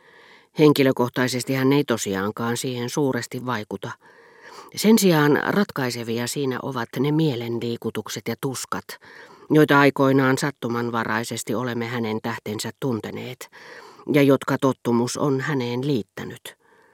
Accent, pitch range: native, 120-150 Hz